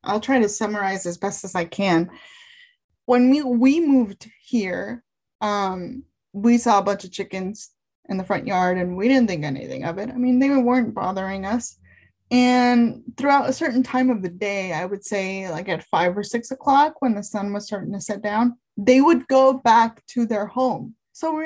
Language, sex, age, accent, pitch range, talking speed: English, female, 20-39, American, 205-265 Hz, 200 wpm